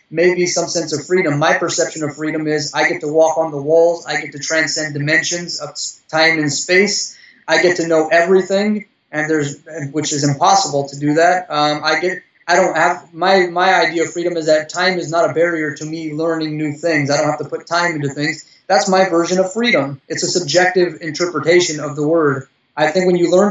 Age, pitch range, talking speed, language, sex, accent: 20-39, 150-175 Hz, 220 wpm, English, male, American